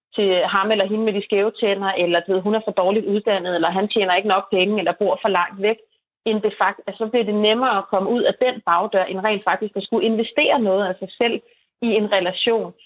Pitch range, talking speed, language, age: 190-220 Hz, 240 wpm, Danish, 30-49